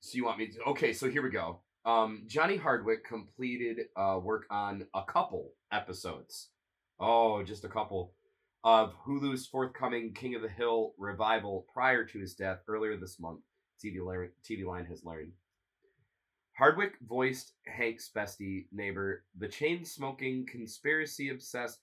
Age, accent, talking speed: 30-49, American, 145 wpm